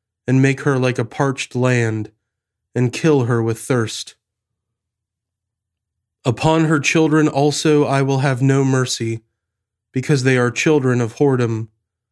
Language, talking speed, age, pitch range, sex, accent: English, 135 wpm, 30-49, 110-135 Hz, male, American